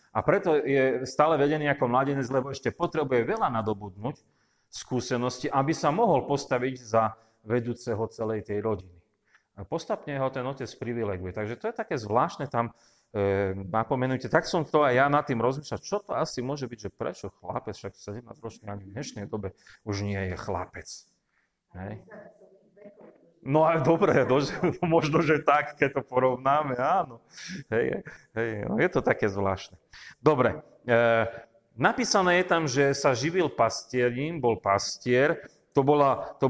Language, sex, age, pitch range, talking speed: Slovak, male, 30-49, 110-140 Hz, 150 wpm